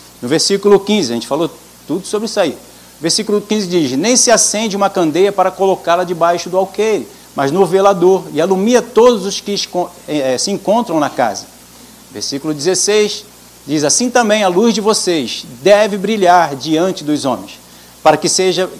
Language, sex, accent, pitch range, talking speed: Portuguese, male, Brazilian, 150-200 Hz, 170 wpm